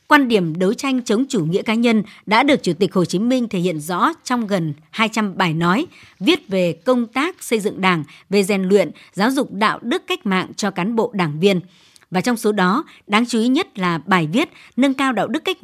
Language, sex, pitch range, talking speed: Vietnamese, male, 185-245 Hz, 235 wpm